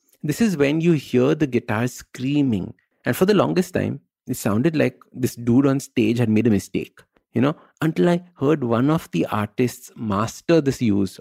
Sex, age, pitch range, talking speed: male, 50-69, 110-145 Hz, 195 wpm